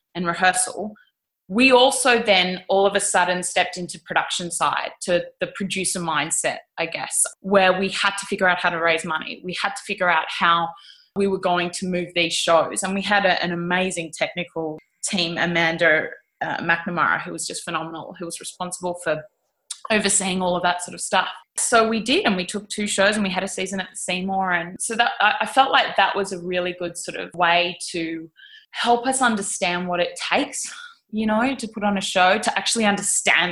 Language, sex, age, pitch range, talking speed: English, female, 20-39, 175-205 Hz, 210 wpm